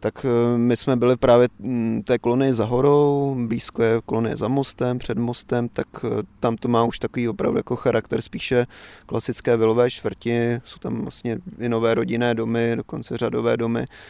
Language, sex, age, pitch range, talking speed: Czech, male, 30-49, 115-125 Hz, 165 wpm